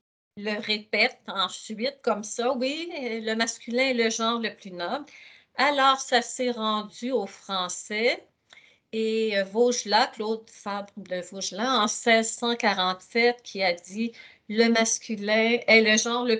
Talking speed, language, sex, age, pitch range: 135 wpm, French, female, 50-69, 205-245 Hz